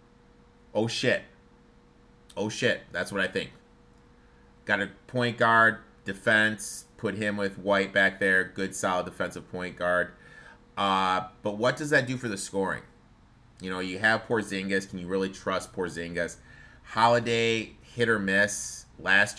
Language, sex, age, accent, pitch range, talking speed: English, male, 30-49, American, 95-115 Hz, 150 wpm